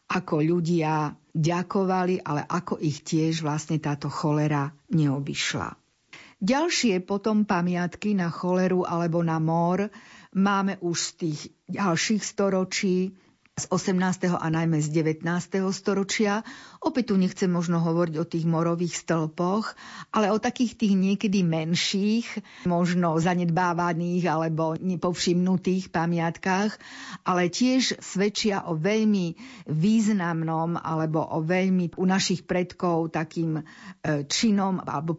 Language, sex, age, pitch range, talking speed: Slovak, female, 50-69, 160-195 Hz, 115 wpm